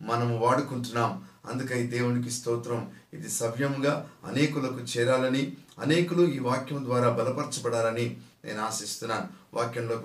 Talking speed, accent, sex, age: 100 wpm, native, male, 50-69